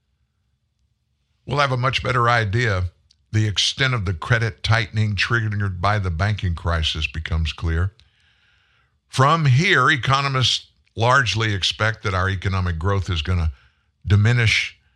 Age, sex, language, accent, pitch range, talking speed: 50-69, male, English, American, 95-120 Hz, 130 wpm